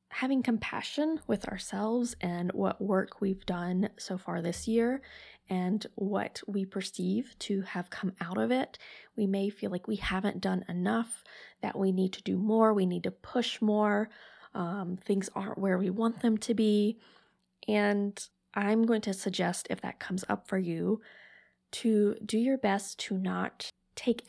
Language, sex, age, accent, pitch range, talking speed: English, female, 20-39, American, 185-225 Hz, 170 wpm